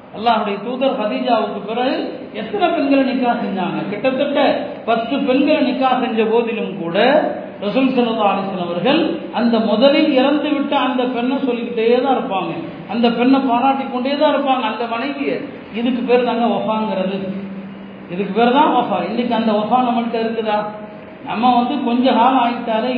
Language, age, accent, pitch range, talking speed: Tamil, 40-59, native, 215-265 Hz, 50 wpm